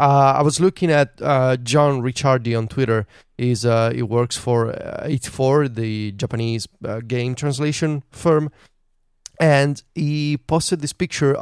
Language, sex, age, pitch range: English, male, 20-39, 120-150 Hz